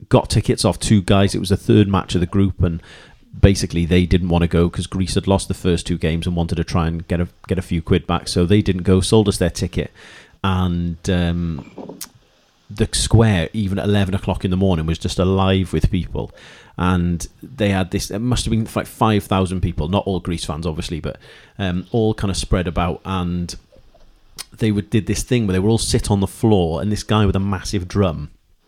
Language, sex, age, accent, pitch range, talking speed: English, male, 30-49, British, 90-105 Hz, 225 wpm